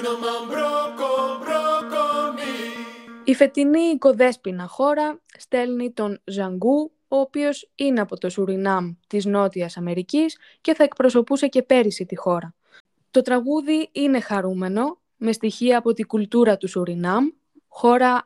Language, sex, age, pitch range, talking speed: Greek, female, 20-39, 195-275 Hz, 115 wpm